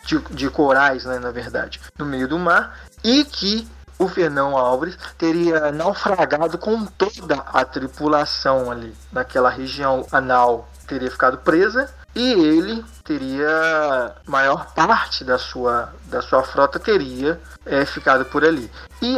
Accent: Brazilian